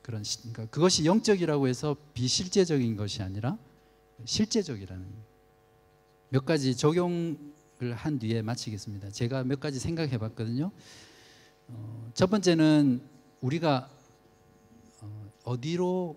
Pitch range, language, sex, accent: 110-145 Hz, Korean, male, native